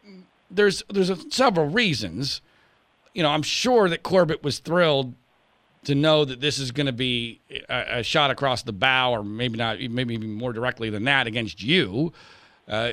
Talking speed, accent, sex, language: 175 wpm, American, male, English